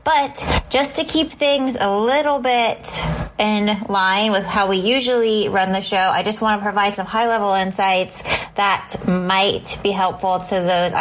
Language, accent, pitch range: English, American, 185-220 Hz